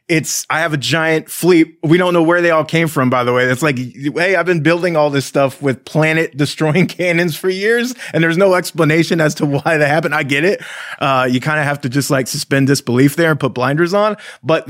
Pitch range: 130-165 Hz